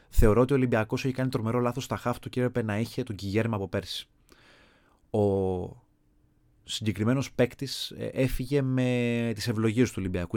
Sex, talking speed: male, 155 wpm